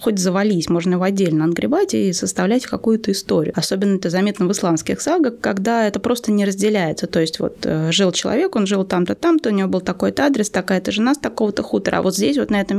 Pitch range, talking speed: 180-230 Hz, 215 wpm